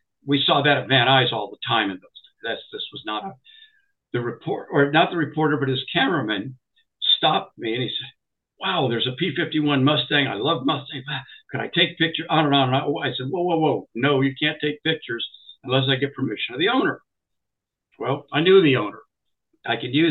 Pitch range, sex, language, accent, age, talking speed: 135-165 Hz, male, English, American, 60-79, 205 wpm